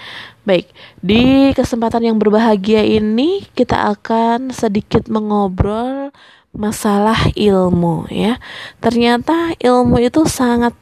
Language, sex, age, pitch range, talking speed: Indonesian, female, 20-39, 205-255 Hz, 95 wpm